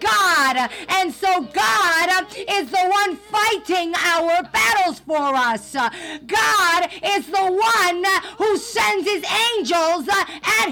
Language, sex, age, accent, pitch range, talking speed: English, female, 40-59, American, 320-385 Hz, 120 wpm